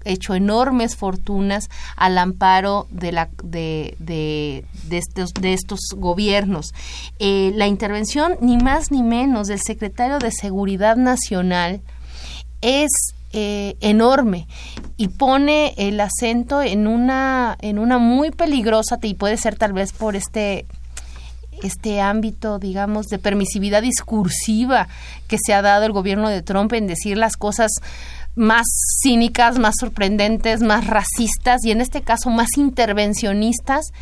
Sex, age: female, 30-49